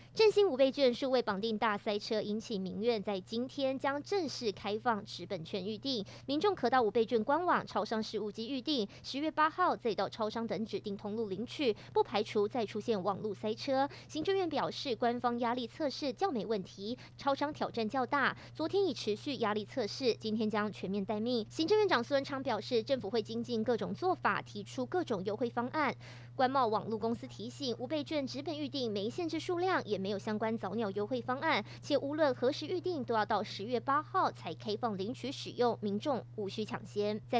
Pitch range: 215-285 Hz